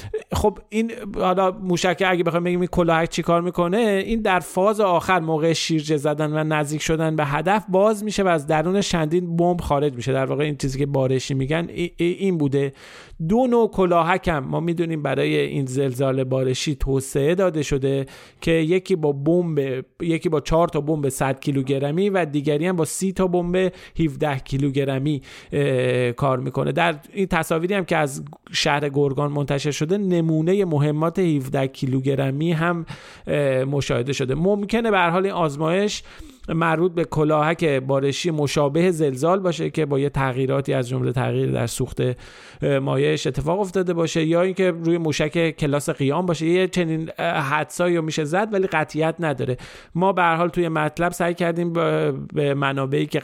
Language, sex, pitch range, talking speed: Persian, male, 135-175 Hz, 160 wpm